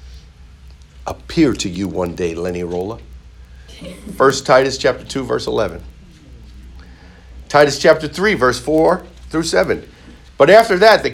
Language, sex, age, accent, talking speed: English, male, 50-69, American, 130 wpm